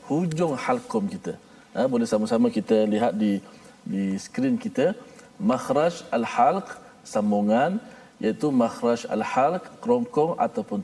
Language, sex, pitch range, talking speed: Malayalam, male, 170-250 Hz, 110 wpm